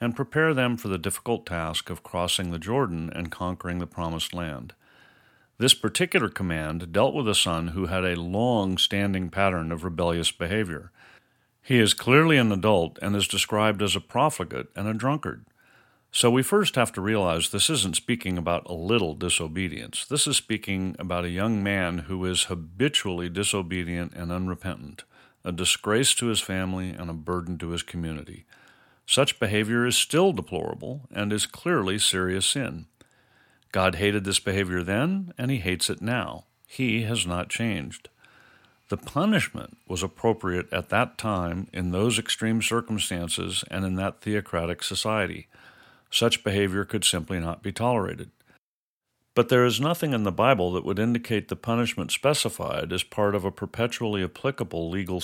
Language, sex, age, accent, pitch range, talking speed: English, male, 50-69, American, 90-115 Hz, 160 wpm